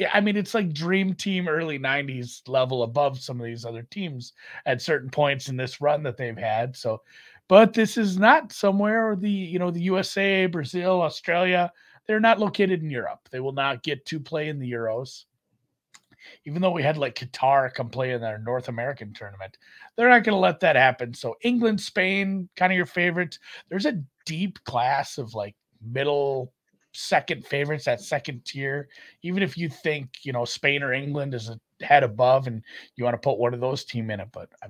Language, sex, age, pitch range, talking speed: English, male, 30-49, 125-180 Hz, 200 wpm